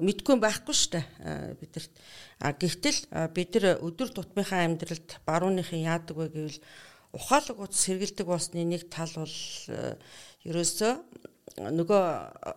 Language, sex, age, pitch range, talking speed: English, female, 50-69, 165-200 Hz, 80 wpm